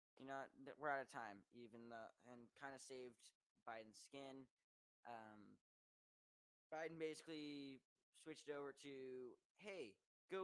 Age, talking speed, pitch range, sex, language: 10-29, 125 wpm, 120-160 Hz, male, English